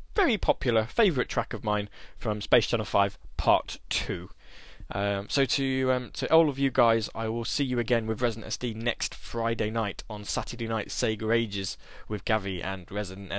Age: 10-29